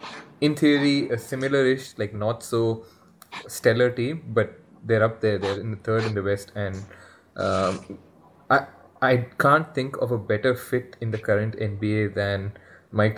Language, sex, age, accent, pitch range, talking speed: English, male, 20-39, Indian, 100-120 Hz, 165 wpm